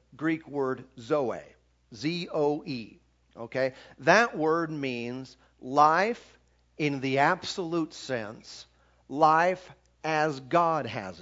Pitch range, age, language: 125-175 Hz, 50-69, English